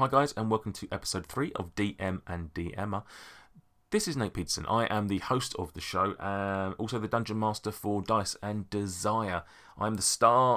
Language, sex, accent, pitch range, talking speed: English, male, British, 85-105 Hz, 195 wpm